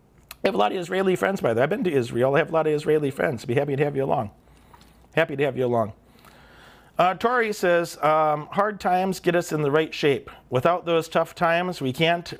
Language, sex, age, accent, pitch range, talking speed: English, male, 40-59, American, 125-155 Hz, 240 wpm